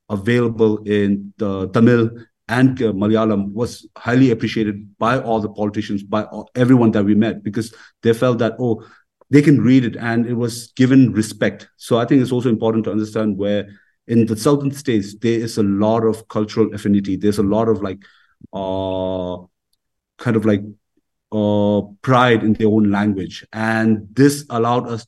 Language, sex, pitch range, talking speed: English, male, 105-125 Hz, 170 wpm